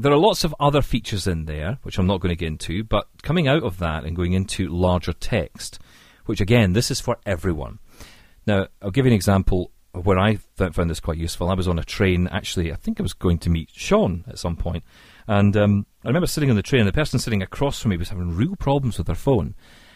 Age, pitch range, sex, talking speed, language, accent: 40-59, 90-120 Hz, male, 250 wpm, English, British